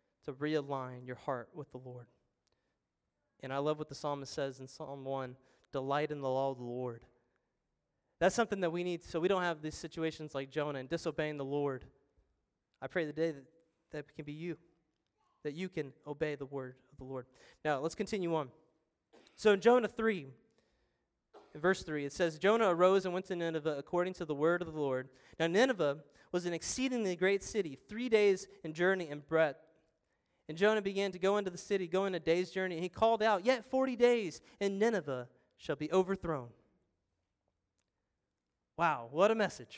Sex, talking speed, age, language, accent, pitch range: male, 185 wpm, 20-39, English, American, 140-190 Hz